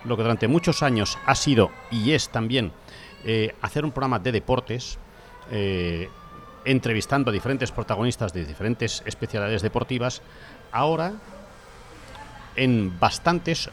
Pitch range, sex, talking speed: 115-165 Hz, male, 120 wpm